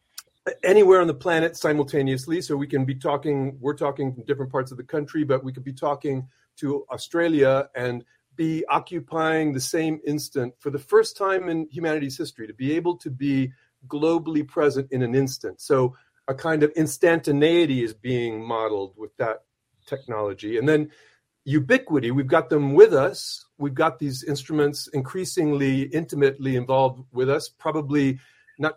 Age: 40-59